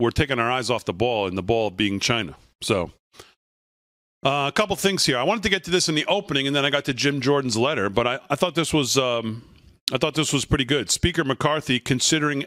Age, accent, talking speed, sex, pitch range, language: 40-59, American, 245 wpm, male, 130-160 Hz, English